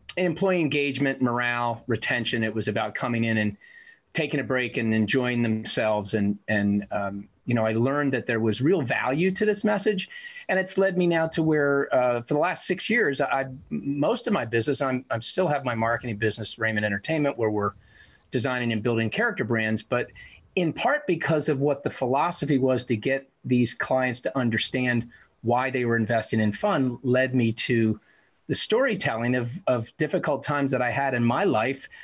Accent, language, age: American, English, 40-59